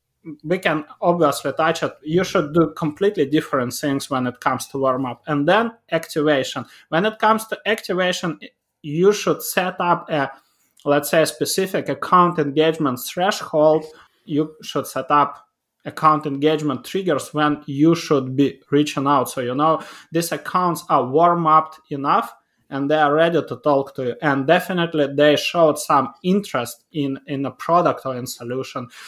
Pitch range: 140-170 Hz